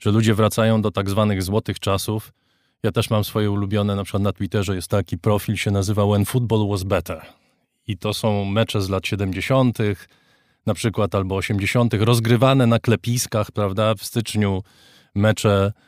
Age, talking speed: 20-39, 165 wpm